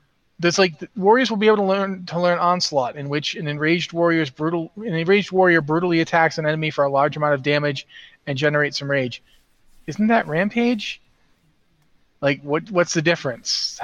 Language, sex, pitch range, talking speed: English, male, 140-175 Hz, 180 wpm